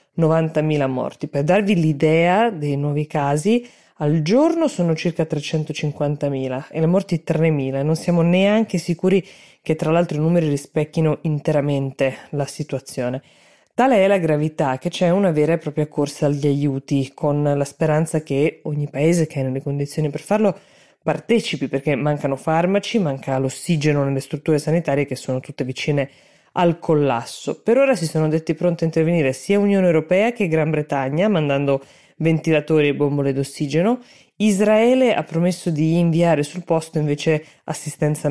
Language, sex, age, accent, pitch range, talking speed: Italian, female, 20-39, native, 145-175 Hz, 155 wpm